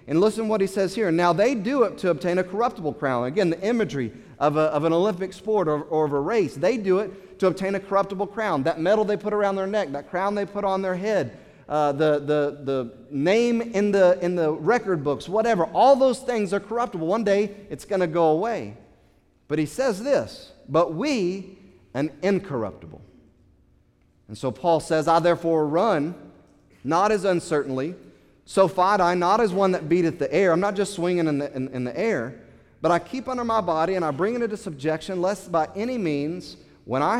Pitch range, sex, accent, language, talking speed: 155-200 Hz, male, American, English, 210 wpm